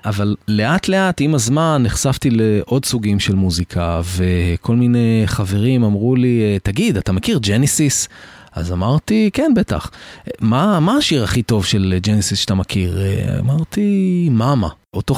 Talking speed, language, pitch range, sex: 135 wpm, Hebrew, 100-135 Hz, male